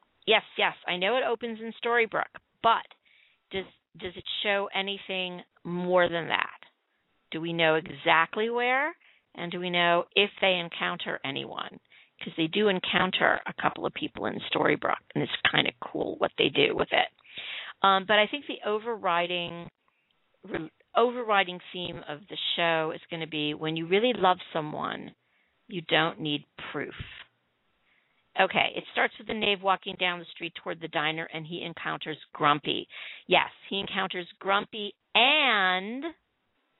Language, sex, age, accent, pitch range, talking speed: English, female, 50-69, American, 165-205 Hz, 160 wpm